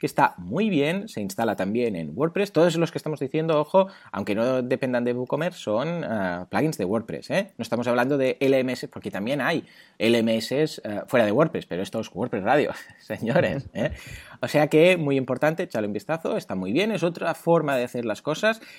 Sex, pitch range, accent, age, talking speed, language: male, 125-170 Hz, Spanish, 30-49, 195 wpm, Spanish